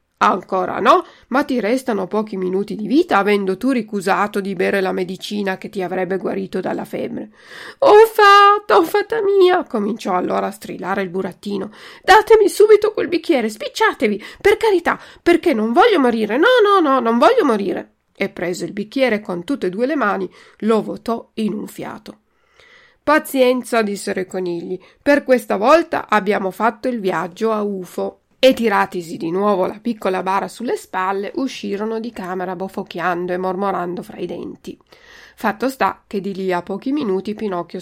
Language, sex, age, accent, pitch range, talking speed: Italian, female, 40-59, native, 190-265 Hz, 165 wpm